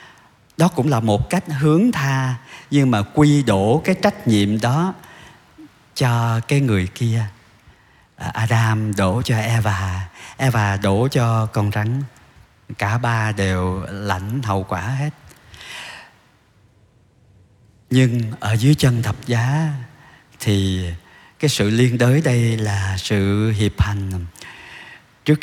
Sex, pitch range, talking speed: male, 100-135 Hz, 125 wpm